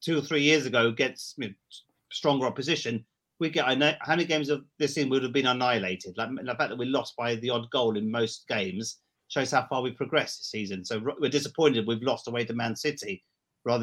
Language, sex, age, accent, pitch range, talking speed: English, male, 40-59, British, 125-150 Hz, 240 wpm